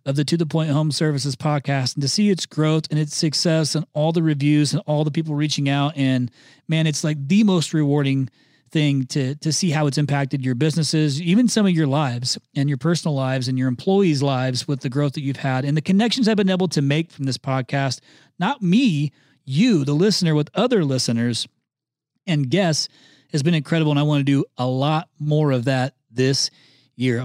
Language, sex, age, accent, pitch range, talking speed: English, male, 40-59, American, 140-170 Hz, 215 wpm